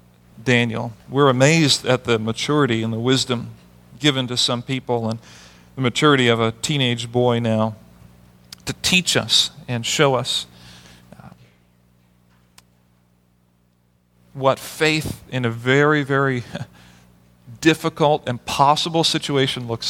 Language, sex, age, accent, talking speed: English, male, 40-59, American, 110 wpm